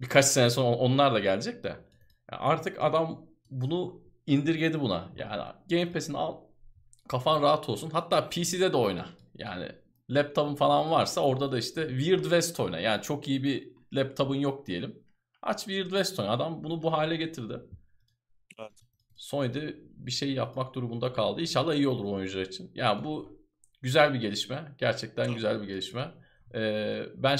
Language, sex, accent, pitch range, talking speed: Turkish, male, native, 115-145 Hz, 155 wpm